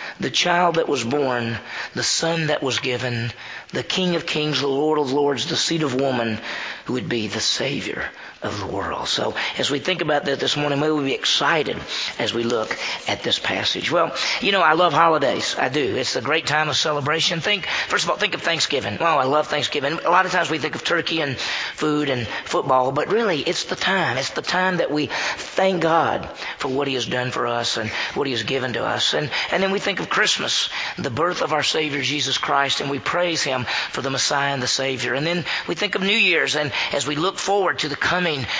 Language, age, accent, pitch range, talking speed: English, 40-59, American, 135-160 Hz, 235 wpm